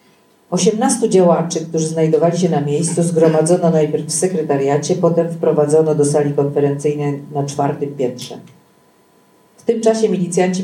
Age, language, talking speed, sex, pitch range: 40-59, Polish, 130 wpm, female, 150-185 Hz